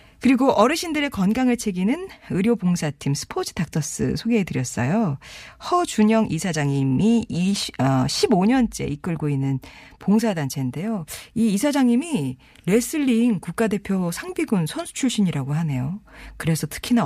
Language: Korean